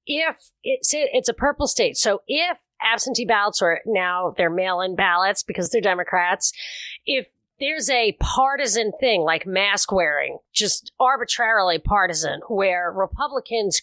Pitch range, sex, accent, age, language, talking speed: 185-255 Hz, female, American, 30-49, English, 140 wpm